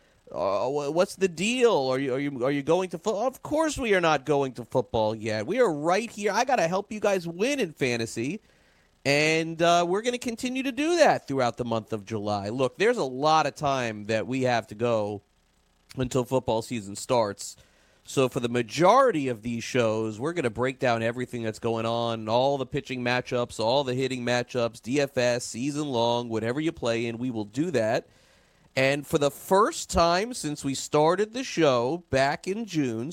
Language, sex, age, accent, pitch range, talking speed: English, male, 40-59, American, 115-155 Hz, 195 wpm